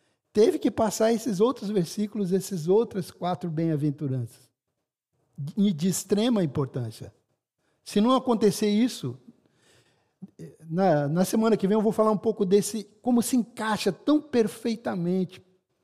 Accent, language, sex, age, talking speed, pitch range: Brazilian, Portuguese, male, 60-79, 120 wpm, 160-210 Hz